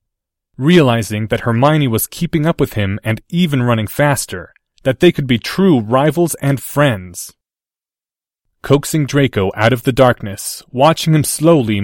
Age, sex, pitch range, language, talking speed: 30-49, male, 105-135 Hz, English, 145 wpm